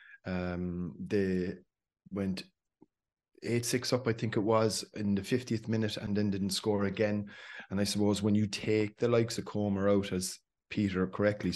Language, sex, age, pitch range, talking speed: English, male, 30-49, 95-110 Hz, 165 wpm